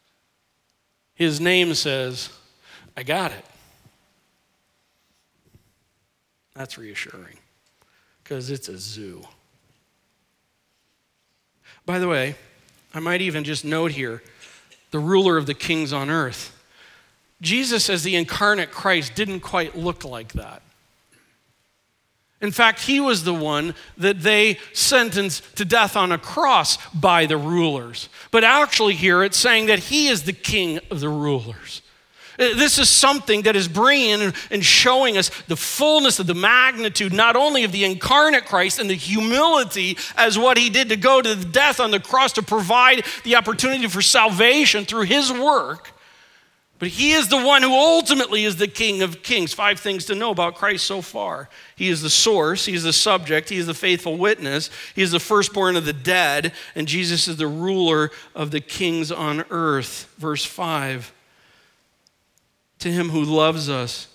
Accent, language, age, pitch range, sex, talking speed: American, English, 50-69, 155-220 Hz, male, 160 wpm